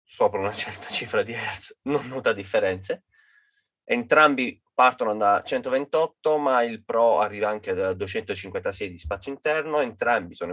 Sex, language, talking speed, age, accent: male, Italian, 140 wpm, 20-39, native